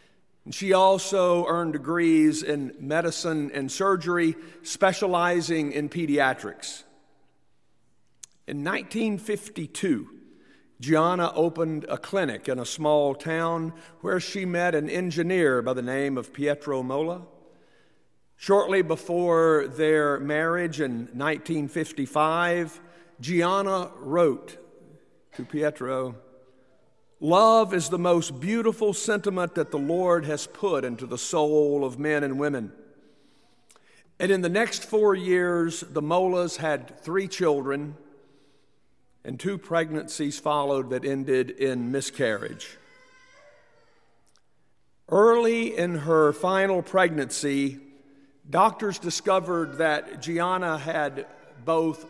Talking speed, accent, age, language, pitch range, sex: 105 wpm, American, 50-69, English, 140-185 Hz, male